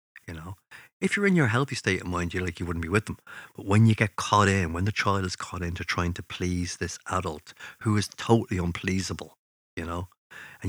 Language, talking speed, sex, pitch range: English, 230 wpm, male, 90-110 Hz